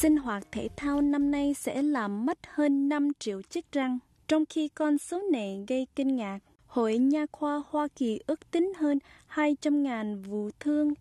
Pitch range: 225-290 Hz